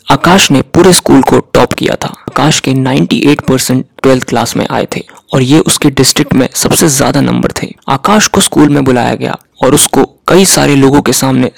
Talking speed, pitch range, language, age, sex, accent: 200 wpm, 130-160 Hz, Hindi, 20-39, male, native